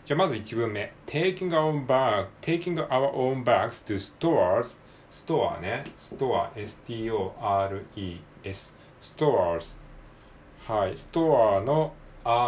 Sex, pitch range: male, 105-145 Hz